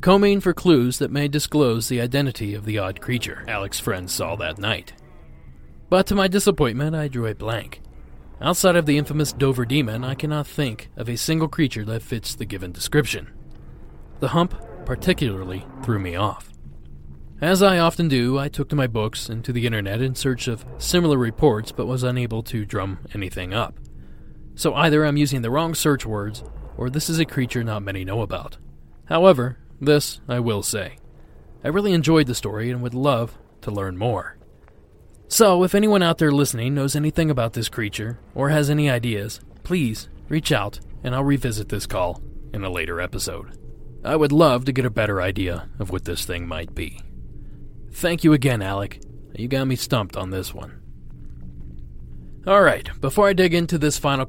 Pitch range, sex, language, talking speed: 95-145 Hz, male, English, 185 wpm